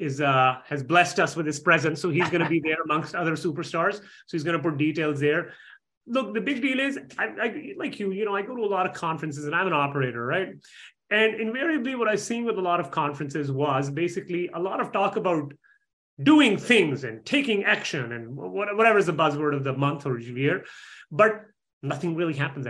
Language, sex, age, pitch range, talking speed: English, male, 30-49, 150-215 Hz, 215 wpm